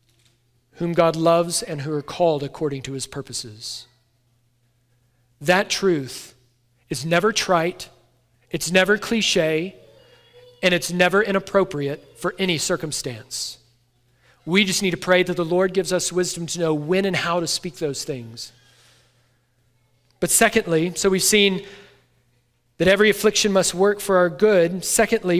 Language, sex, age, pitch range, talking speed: English, male, 40-59, 125-185 Hz, 140 wpm